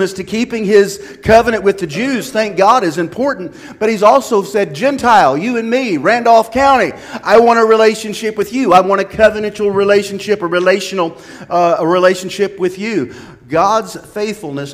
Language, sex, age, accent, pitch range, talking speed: English, male, 40-59, American, 125-185 Hz, 165 wpm